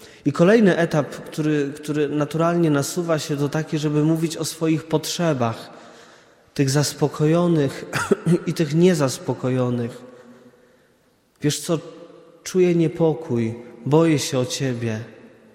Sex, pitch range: male, 125-160 Hz